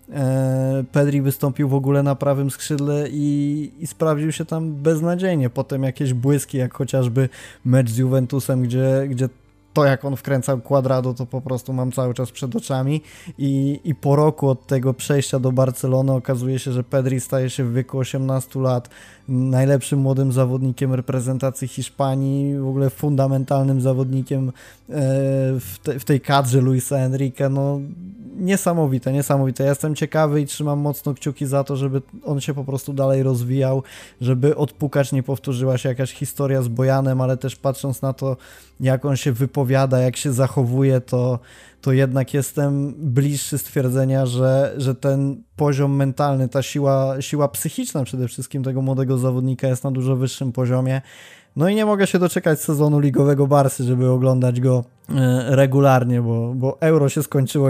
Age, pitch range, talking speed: 20-39, 130-145 Hz, 160 wpm